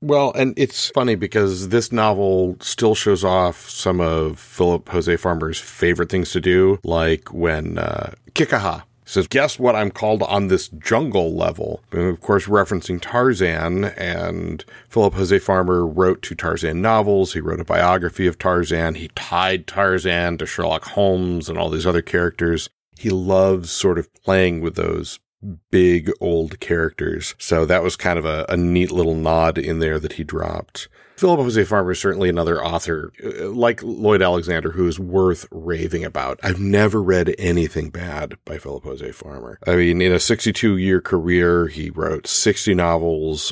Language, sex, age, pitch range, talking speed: English, male, 40-59, 85-100 Hz, 170 wpm